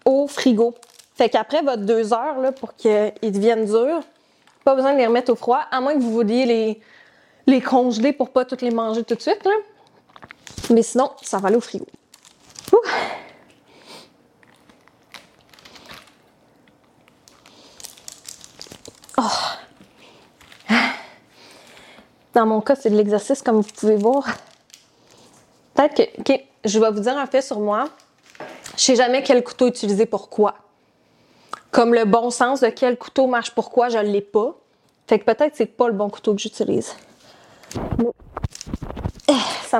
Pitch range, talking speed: 225-265 Hz, 150 wpm